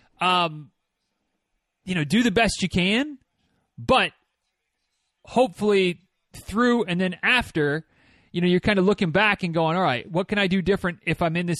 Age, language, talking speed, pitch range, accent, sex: 30-49, English, 175 wpm, 150-190 Hz, American, male